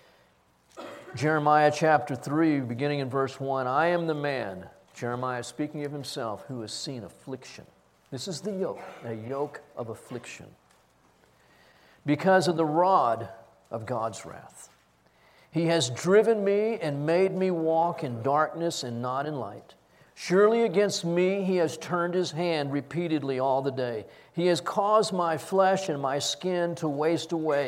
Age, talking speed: 50-69, 155 wpm